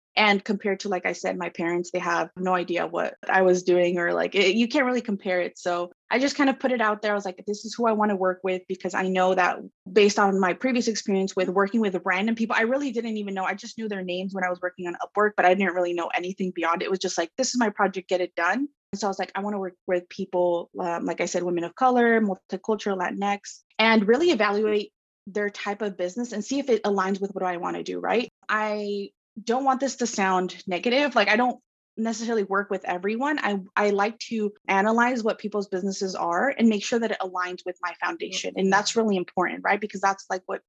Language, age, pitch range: English, 20-39, 185-215 Hz